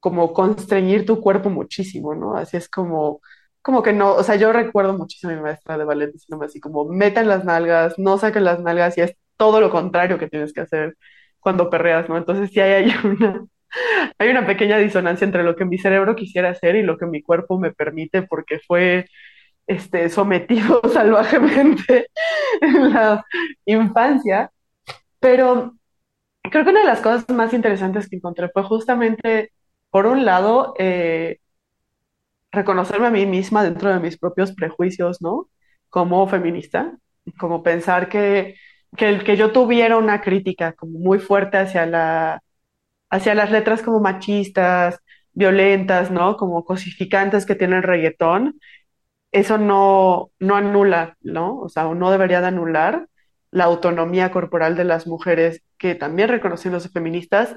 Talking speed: 155 wpm